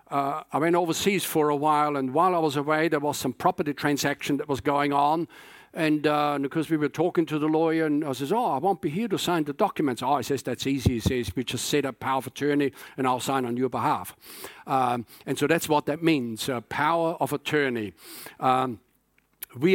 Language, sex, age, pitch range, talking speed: English, male, 50-69, 140-175 Hz, 230 wpm